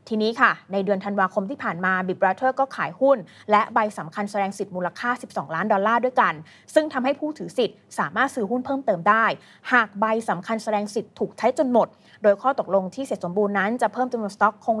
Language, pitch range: Thai, 195-255 Hz